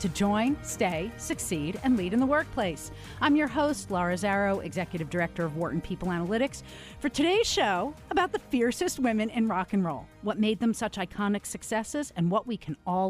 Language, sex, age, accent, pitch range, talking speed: English, female, 40-59, American, 175-270 Hz, 190 wpm